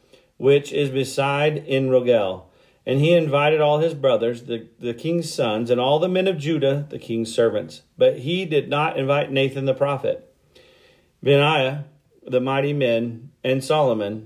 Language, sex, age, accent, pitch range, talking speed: English, male, 40-59, American, 125-155 Hz, 155 wpm